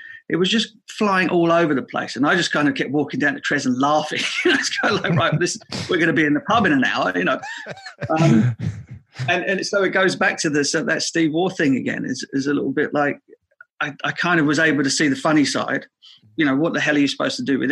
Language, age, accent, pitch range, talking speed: English, 40-59, British, 135-185 Hz, 270 wpm